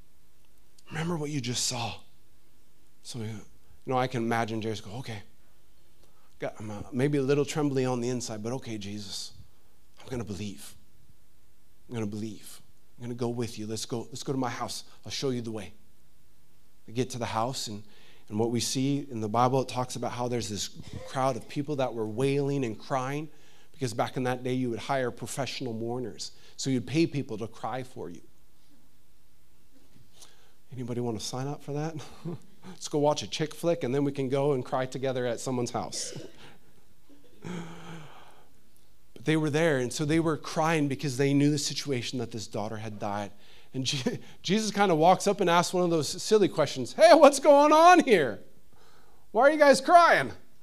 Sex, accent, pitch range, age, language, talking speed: male, American, 110-150 Hz, 30-49, English, 195 wpm